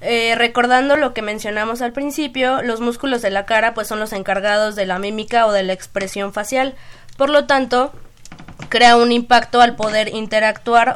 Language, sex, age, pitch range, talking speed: Spanish, female, 20-39, 205-230 Hz, 180 wpm